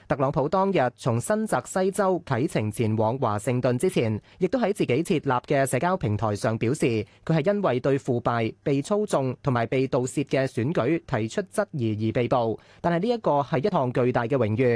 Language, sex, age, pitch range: Chinese, male, 30-49, 115-170 Hz